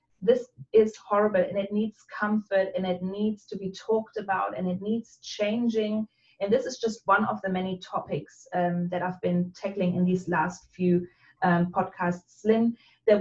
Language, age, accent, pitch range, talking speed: English, 30-49, German, 185-220 Hz, 180 wpm